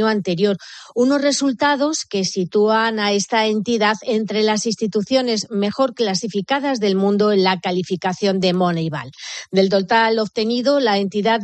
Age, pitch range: 30-49, 200-245 Hz